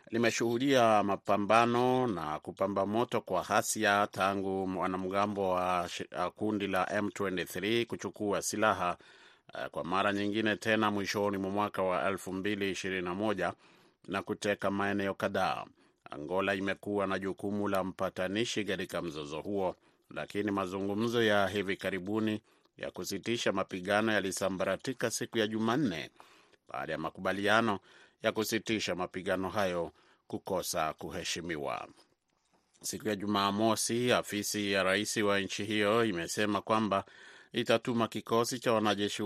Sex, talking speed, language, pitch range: male, 110 wpm, Swahili, 95-110 Hz